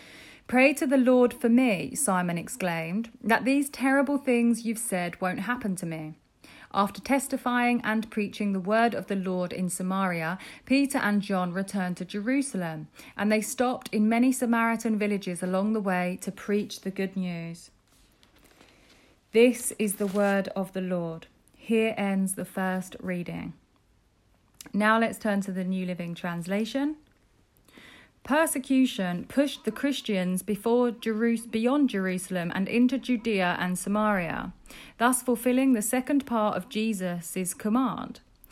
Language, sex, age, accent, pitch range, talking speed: English, female, 40-59, British, 185-245 Hz, 140 wpm